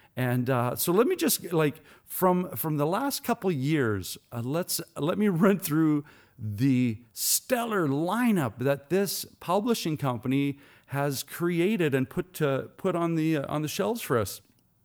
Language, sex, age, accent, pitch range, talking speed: English, male, 40-59, American, 125-195 Hz, 160 wpm